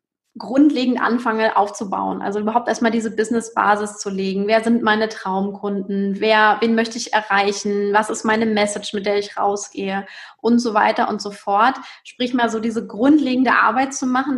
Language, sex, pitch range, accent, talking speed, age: German, female, 210-245 Hz, German, 170 wpm, 20-39